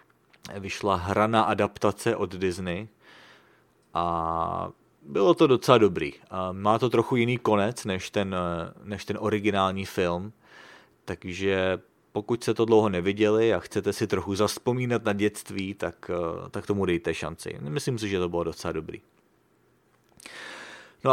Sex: male